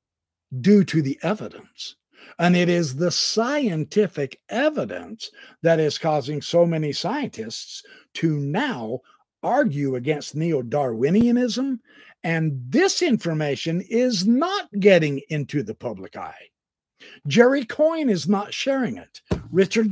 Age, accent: 60-79, American